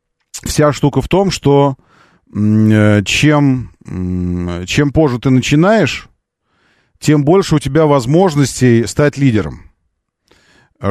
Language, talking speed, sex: Russian, 110 wpm, male